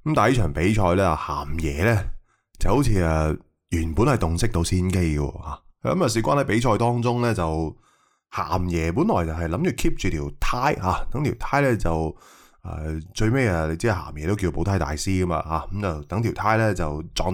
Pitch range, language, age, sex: 80-115 Hz, Chinese, 20-39, male